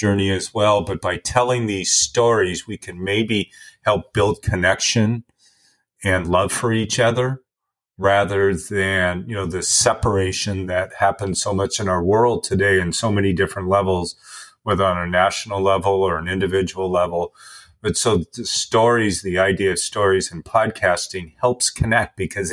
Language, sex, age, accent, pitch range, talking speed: English, male, 40-59, American, 95-115 Hz, 160 wpm